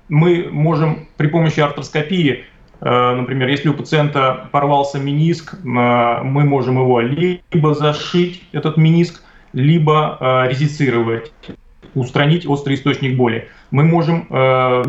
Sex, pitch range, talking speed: male, 130-155 Hz, 110 wpm